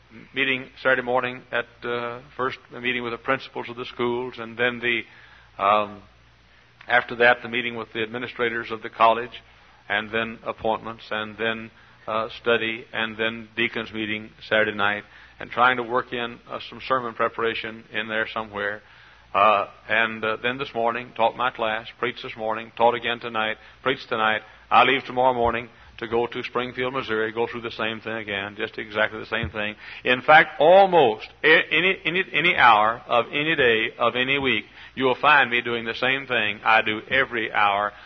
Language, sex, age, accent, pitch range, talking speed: English, male, 60-79, American, 110-125 Hz, 180 wpm